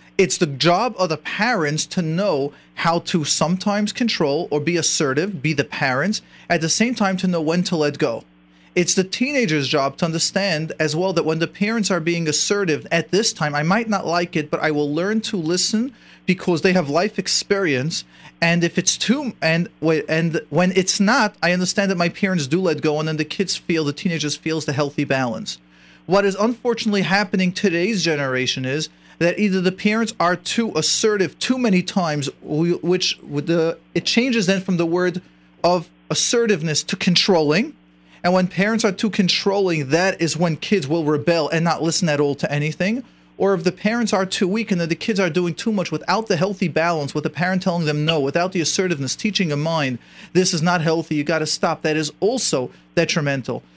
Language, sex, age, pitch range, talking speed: English, male, 40-59, 155-195 Hz, 200 wpm